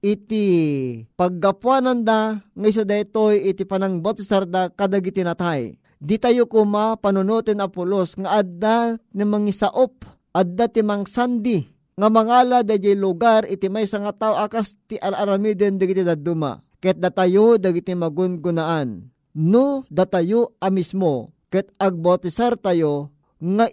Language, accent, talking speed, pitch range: Filipino, native, 130 wpm, 175-215 Hz